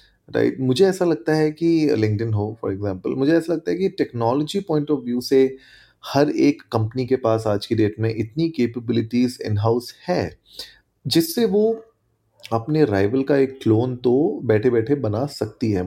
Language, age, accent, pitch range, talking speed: Hindi, 30-49, native, 105-140 Hz, 180 wpm